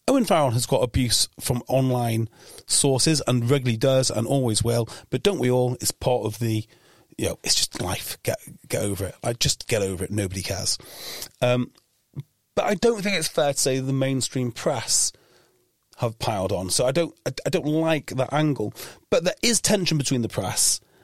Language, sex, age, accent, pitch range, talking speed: English, male, 40-59, British, 120-160 Hz, 195 wpm